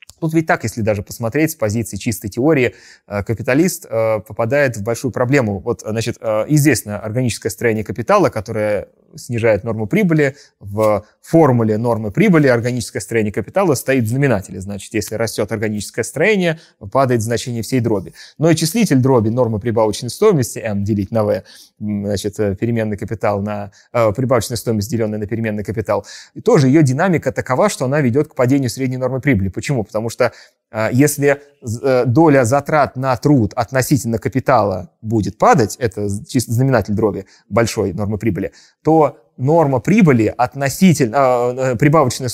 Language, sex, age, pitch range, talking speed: Russian, male, 20-39, 110-140 Hz, 145 wpm